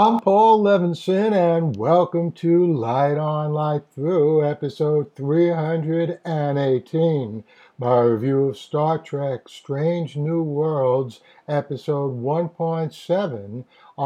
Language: English